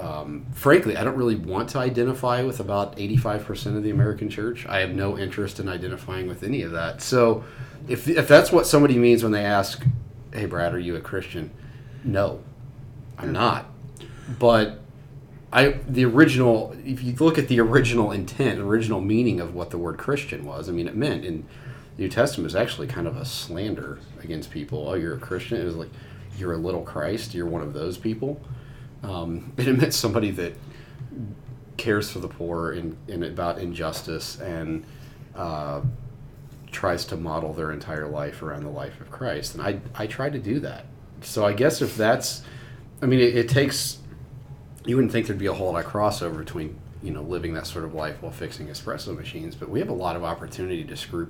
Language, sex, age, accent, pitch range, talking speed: English, male, 30-49, American, 100-130 Hz, 200 wpm